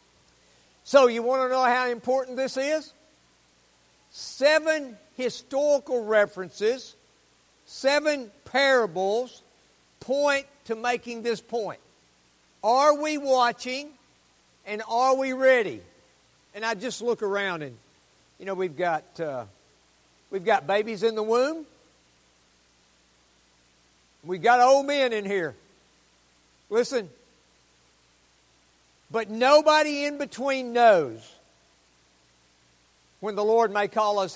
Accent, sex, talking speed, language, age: American, male, 110 wpm, English, 60-79